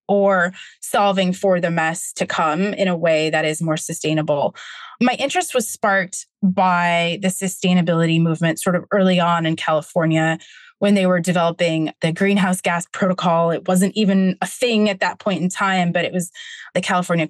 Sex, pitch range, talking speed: female, 170-200 Hz, 175 wpm